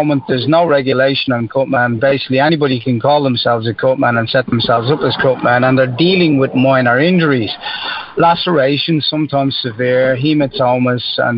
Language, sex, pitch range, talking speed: English, male, 125-145 Hz, 155 wpm